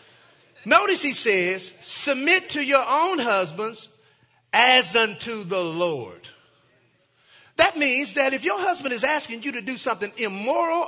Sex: male